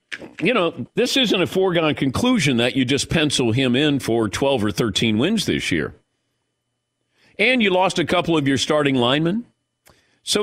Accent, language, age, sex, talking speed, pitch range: American, English, 50-69, male, 175 wpm, 115-175 Hz